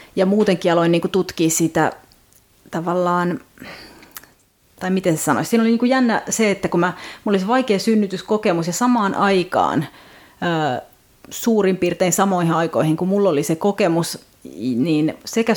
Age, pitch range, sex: 30-49, 160-195 Hz, female